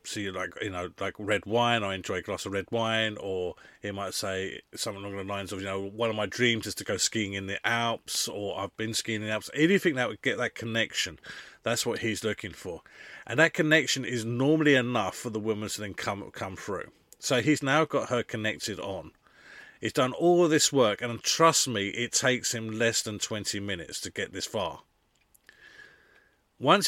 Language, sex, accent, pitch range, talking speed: English, male, British, 100-120 Hz, 220 wpm